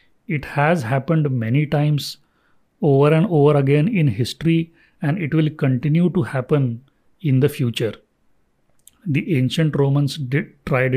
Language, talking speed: English, 130 wpm